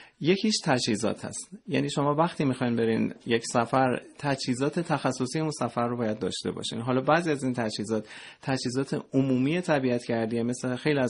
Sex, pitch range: male, 120-150 Hz